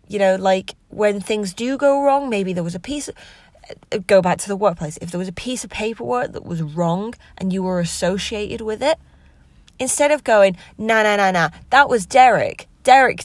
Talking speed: 210 wpm